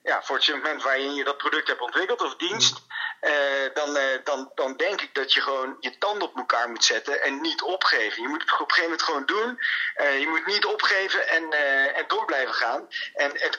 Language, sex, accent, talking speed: Dutch, male, Dutch, 230 wpm